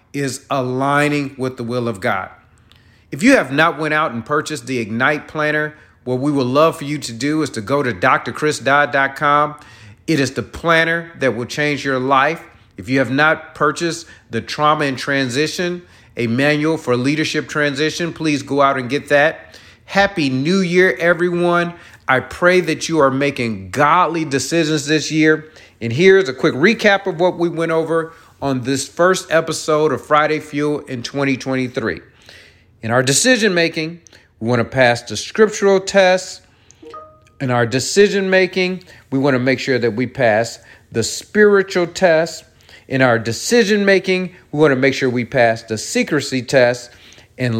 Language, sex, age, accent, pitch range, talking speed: English, male, 40-59, American, 125-160 Hz, 165 wpm